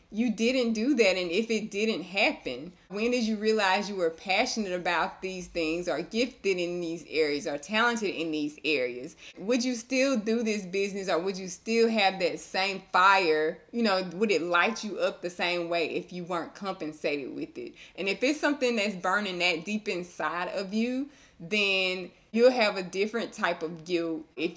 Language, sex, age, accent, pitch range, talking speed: English, female, 20-39, American, 170-220 Hz, 195 wpm